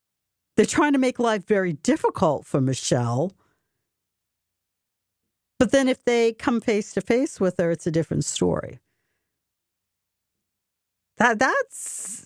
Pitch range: 130-205 Hz